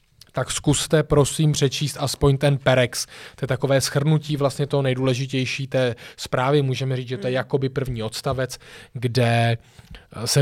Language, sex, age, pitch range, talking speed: Czech, male, 20-39, 125-150 Hz, 150 wpm